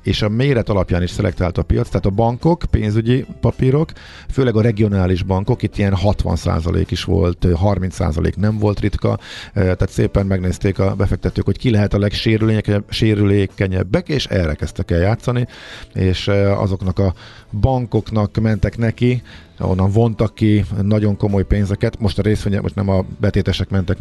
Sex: male